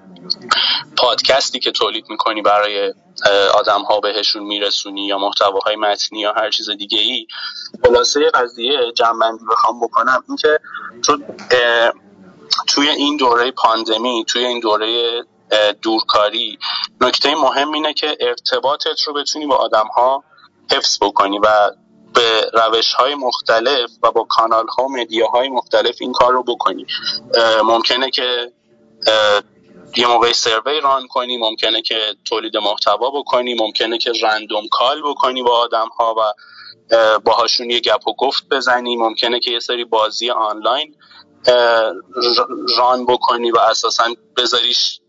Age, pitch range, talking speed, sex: 30-49, 110-130 Hz, 135 wpm, male